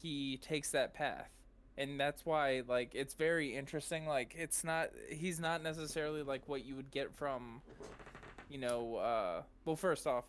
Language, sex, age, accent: English, male, 20-39, American